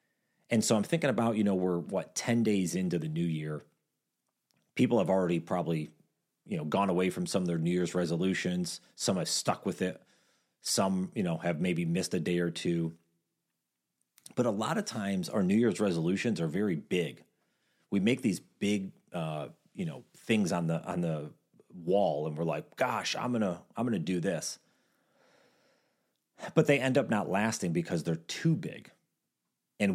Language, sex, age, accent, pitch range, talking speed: English, male, 30-49, American, 85-140 Hz, 185 wpm